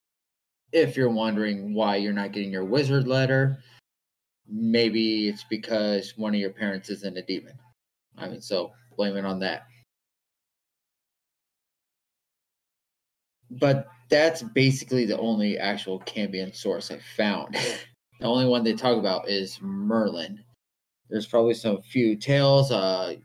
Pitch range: 100-125 Hz